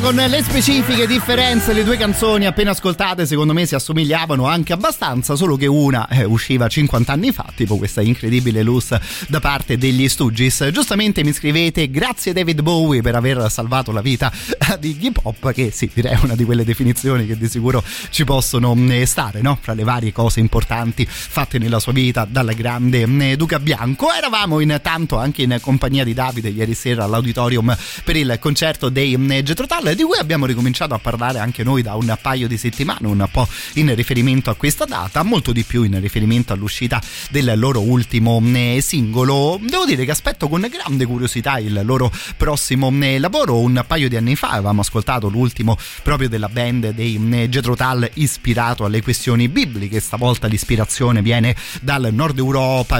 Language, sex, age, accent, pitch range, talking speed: Italian, male, 30-49, native, 115-145 Hz, 170 wpm